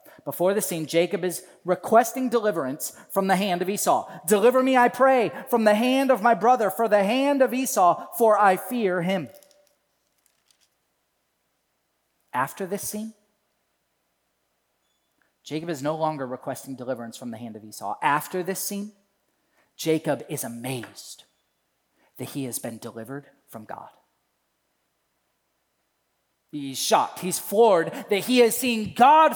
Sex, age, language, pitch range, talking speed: male, 30-49, English, 195-285 Hz, 135 wpm